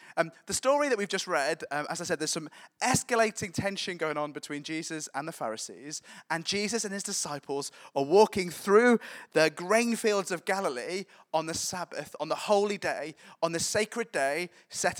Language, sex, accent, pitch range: English, male, British, 155-205 Hz